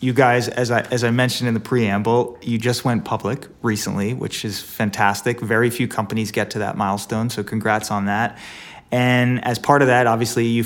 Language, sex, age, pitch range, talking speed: English, male, 30-49, 110-125 Hz, 205 wpm